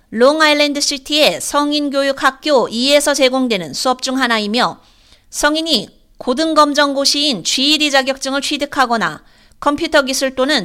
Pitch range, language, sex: 250-295 Hz, Korean, female